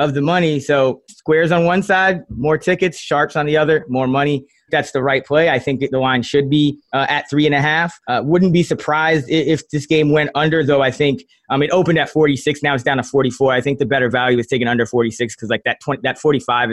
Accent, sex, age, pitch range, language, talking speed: American, male, 20-39, 135-170 Hz, English, 250 wpm